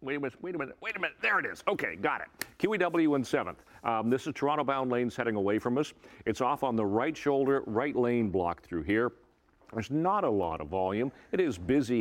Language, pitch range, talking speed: English, 95-135 Hz, 235 wpm